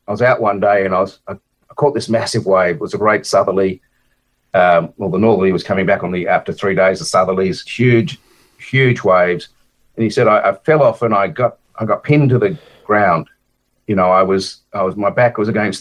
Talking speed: 235 wpm